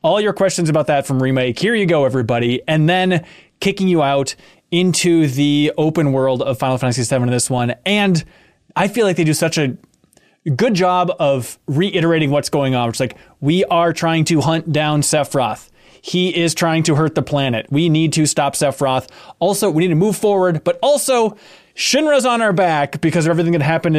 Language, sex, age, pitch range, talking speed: English, male, 20-39, 135-180 Hz, 200 wpm